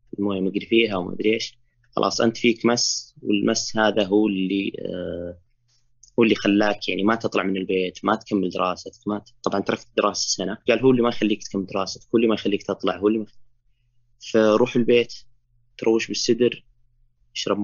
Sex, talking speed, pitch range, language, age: male, 175 wpm, 105-120 Hz, Arabic, 20-39